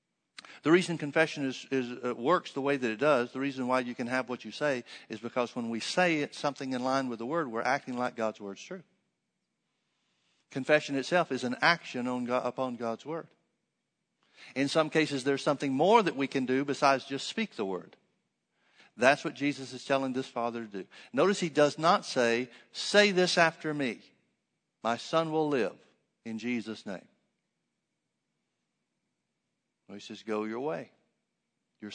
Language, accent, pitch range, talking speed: English, American, 125-155 Hz, 180 wpm